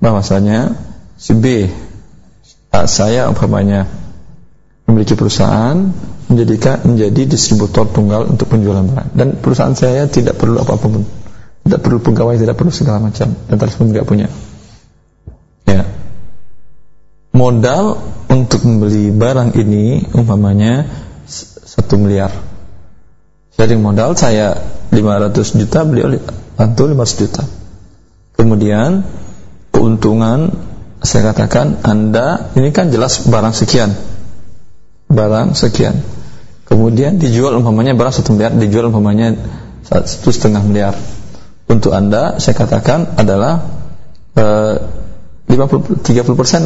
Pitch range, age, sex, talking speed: 105-125 Hz, 20-39, male, 105 wpm